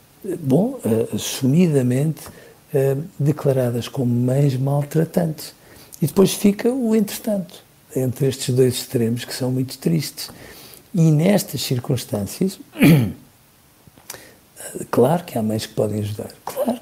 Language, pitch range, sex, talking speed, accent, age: Portuguese, 120-155 Hz, male, 105 wpm, Portuguese, 60-79